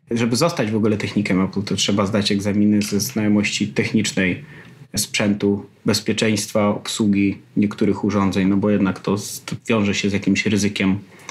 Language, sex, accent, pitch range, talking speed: Polish, male, native, 100-120 Hz, 145 wpm